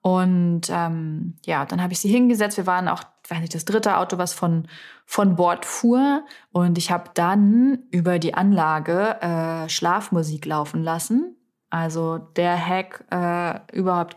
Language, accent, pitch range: German, German, 170-210 Hz